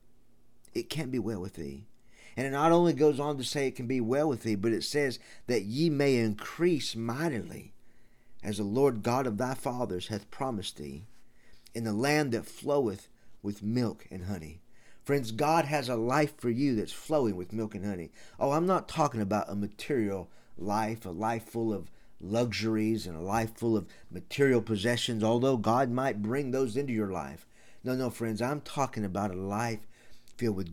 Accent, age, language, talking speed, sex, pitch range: American, 50-69, English, 190 wpm, male, 105-135 Hz